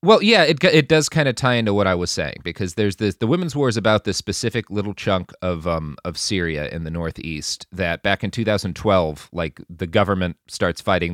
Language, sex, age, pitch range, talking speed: English, male, 30-49, 90-110 Hz, 220 wpm